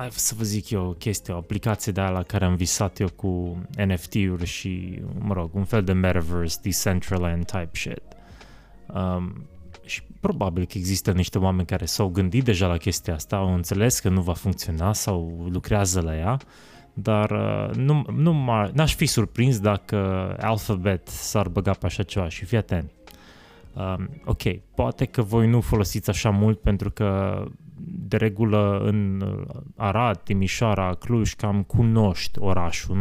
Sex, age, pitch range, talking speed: male, 20-39, 95-110 Hz, 160 wpm